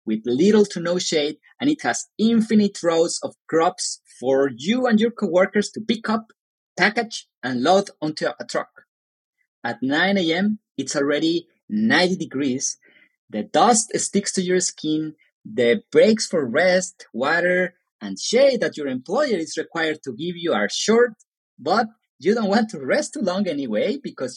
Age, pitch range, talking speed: 30-49, 150-220 Hz, 165 wpm